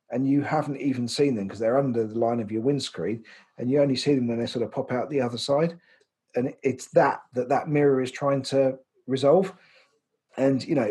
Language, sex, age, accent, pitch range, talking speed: English, male, 40-59, British, 120-145 Hz, 225 wpm